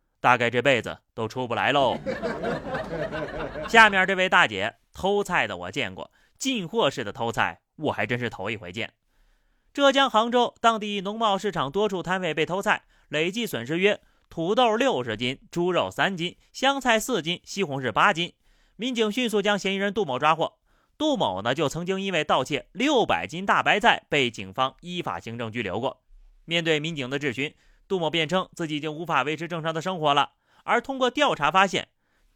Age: 30-49